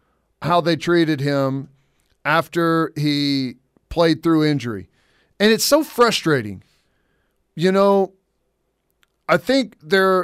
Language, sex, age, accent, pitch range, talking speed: English, male, 40-59, American, 145-185 Hz, 105 wpm